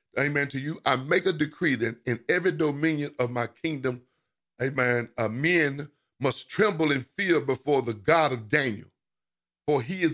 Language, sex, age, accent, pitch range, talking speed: English, male, 50-69, American, 120-160 Hz, 165 wpm